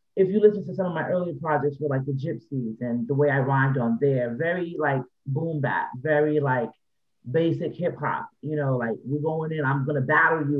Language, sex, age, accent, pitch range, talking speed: English, male, 30-49, American, 140-180 Hz, 225 wpm